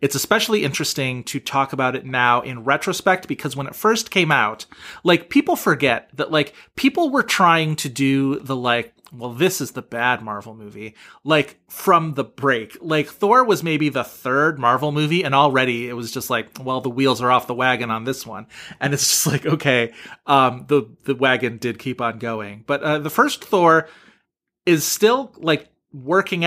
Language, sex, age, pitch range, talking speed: English, male, 30-49, 125-160 Hz, 195 wpm